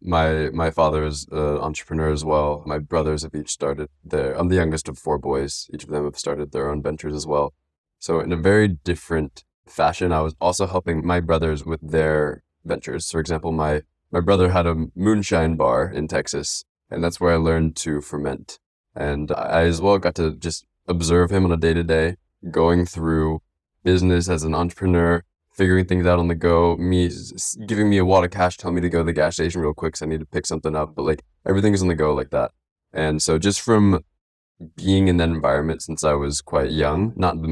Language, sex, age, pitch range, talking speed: English, male, 20-39, 75-90 Hz, 215 wpm